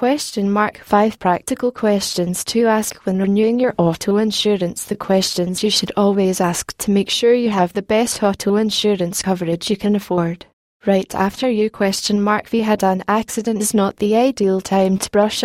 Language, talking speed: English, 185 wpm